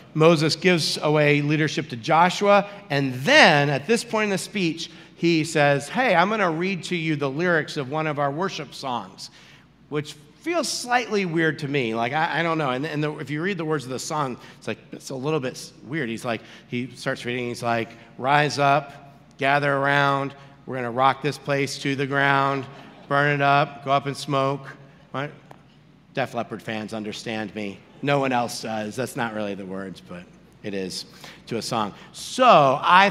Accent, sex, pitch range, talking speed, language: American, male, 120-155 Hz, 200 wpm, English